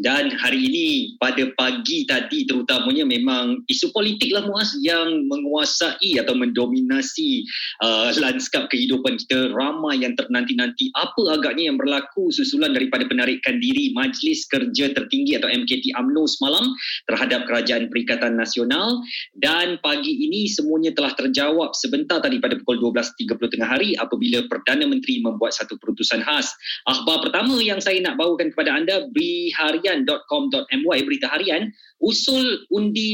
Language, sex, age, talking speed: Malay, male, 20-39, 140 wpm